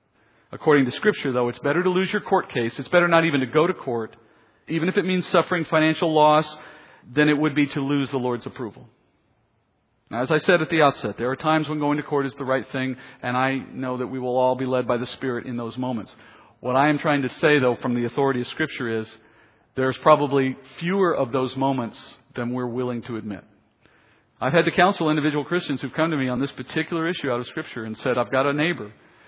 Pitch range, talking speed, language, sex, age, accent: 120-155 Hz, 235 wpm, English, male, 40-59, American